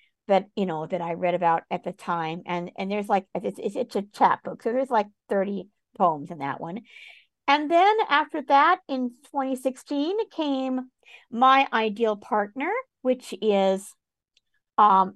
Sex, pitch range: female, 195-265 Hz